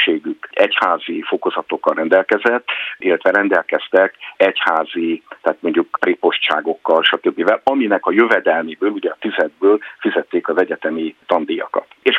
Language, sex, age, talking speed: Hungarian, male, 50-69, 105 wpm